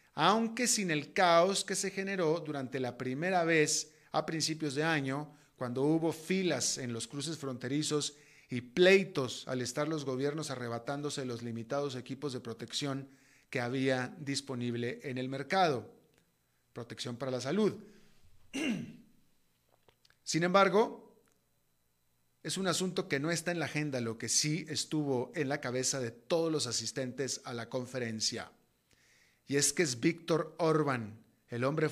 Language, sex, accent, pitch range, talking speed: Spanish, male, Mexican, 130-165 Hz, 145 wpm